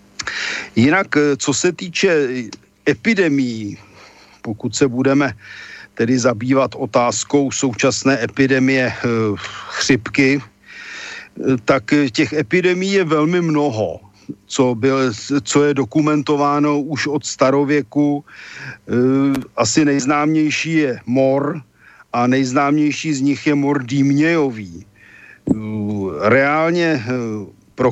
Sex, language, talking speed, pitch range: male, Slovak, 85 wpm, 125-145 Hz